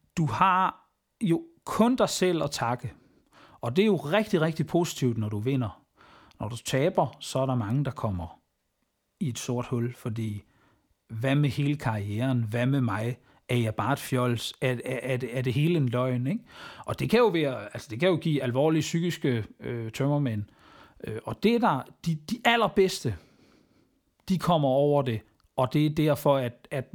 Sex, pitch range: male, 120-165 Hz